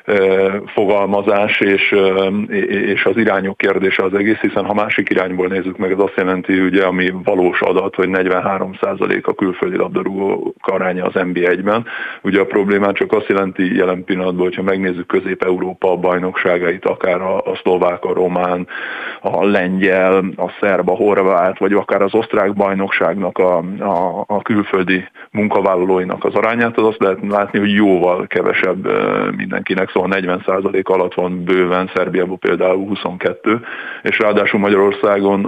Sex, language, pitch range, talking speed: male, Hungarian, 95-100 Hz, 135 wpm